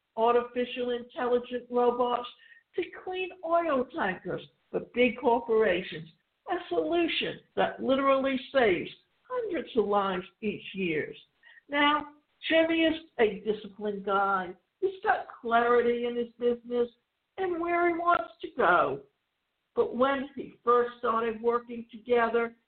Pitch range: 230-330 Hz